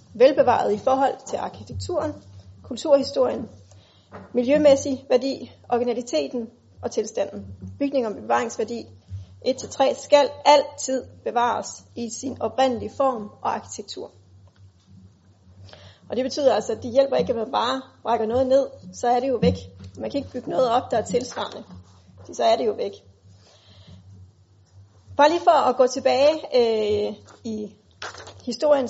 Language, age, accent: Danish, 30-49, native